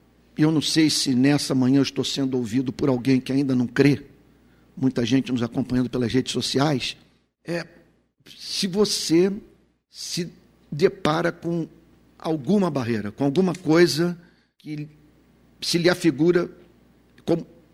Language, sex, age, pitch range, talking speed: Portuguese, male, 50-69, 135-170 Hz, 130 wpm